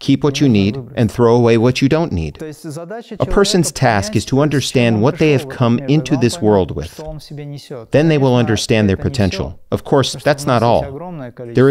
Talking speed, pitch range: 190 wpm, 105-145 Hz